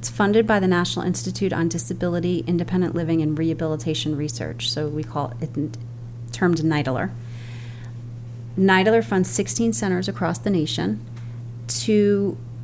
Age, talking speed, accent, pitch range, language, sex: 30-49, 130 wpm, American, 120-170 Hz, English, female